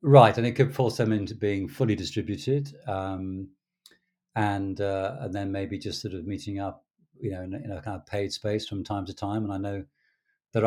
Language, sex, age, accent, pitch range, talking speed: English, male, 50-69, British, 100-140 Hz, 220 wpm